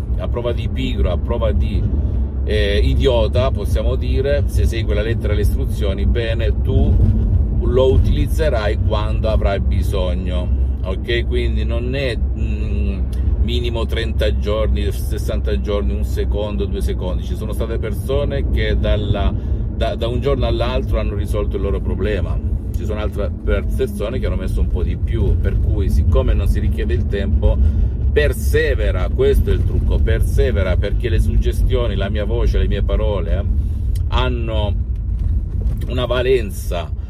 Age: 50-69